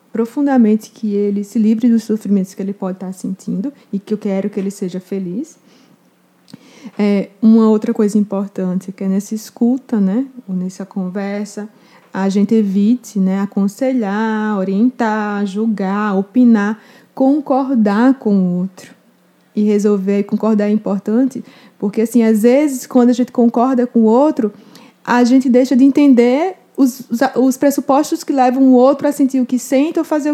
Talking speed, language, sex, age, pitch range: 160 wpm, Portuguese, female, 20-39, 210-255 Hz